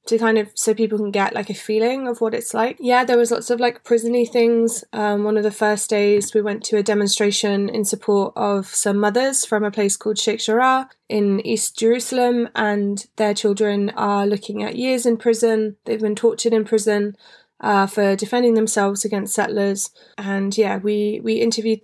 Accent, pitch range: British, 210-235 Hz